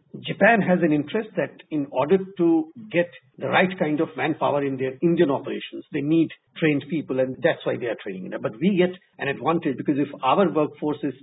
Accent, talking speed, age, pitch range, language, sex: Indian, 205 wpm, 50-69, 145-185 Hz, English, male